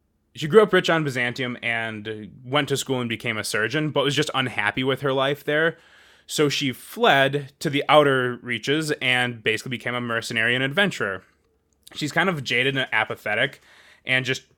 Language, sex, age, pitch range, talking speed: English, male, 20-39, 115-145 Hz, 180 wpm